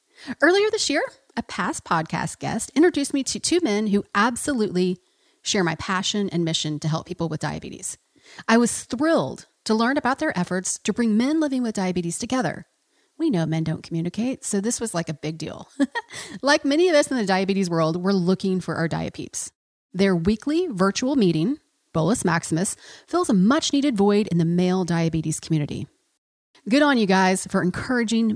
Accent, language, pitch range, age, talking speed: American, English, 180-290 Hz, 30-49, 180 wpm